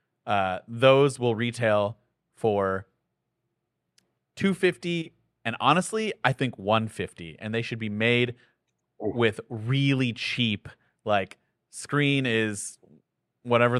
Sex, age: male, 30-49